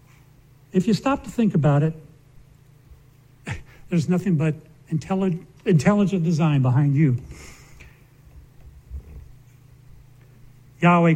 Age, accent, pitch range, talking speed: 70-89, American, 135-195 Hz, 80 wpm